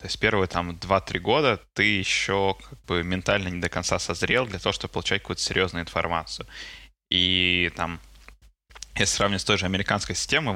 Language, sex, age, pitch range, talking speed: Russian, male, 20-39, 90-100 Hz, 175 wpm